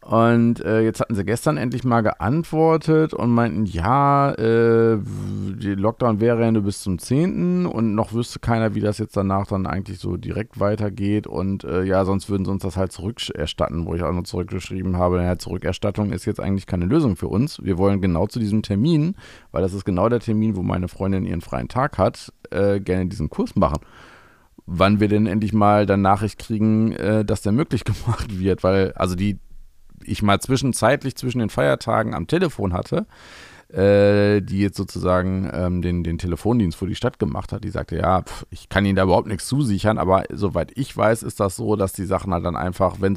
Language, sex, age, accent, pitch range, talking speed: German, male, 40-59, German, 90-110 Hz, 200 wpm